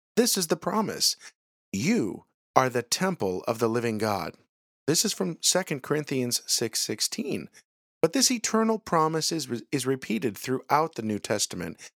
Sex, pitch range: male, 115-185 Hz